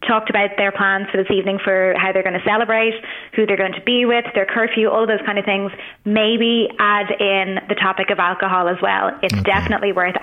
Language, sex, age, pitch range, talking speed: English, female, 20-39, 185-205 Hz, 225 wpm